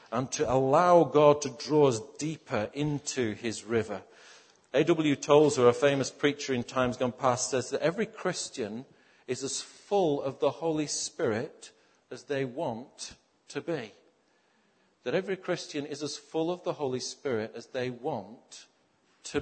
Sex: male